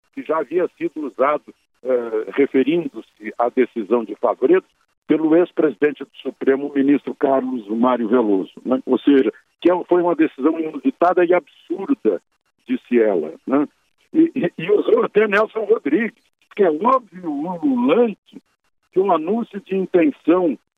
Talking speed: 140 wpm